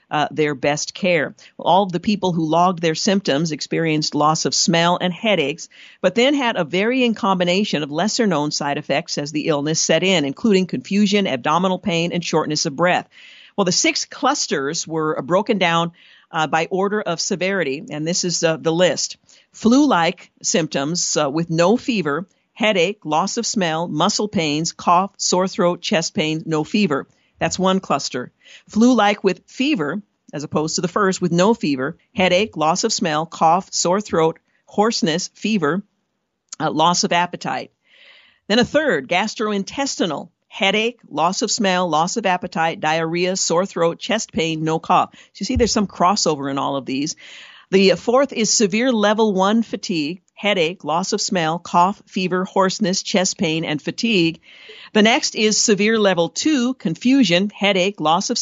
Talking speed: 165 wpm